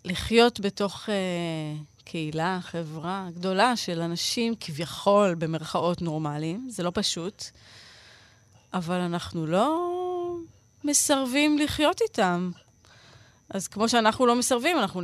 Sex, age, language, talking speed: female, 30-49, Hebrew, 105 wpm